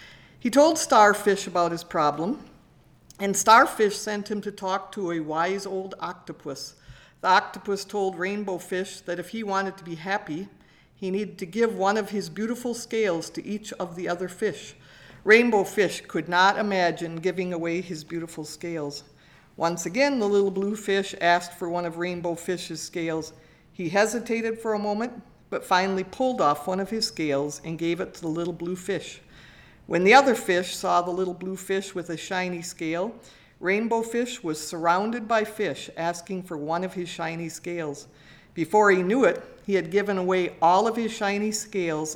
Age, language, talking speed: 50-69, English, 180 wpm